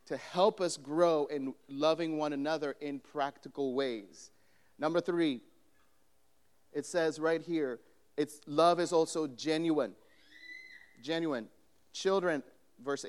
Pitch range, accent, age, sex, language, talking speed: 145-175 Hz, American, 40-59, male, English, 115 wpm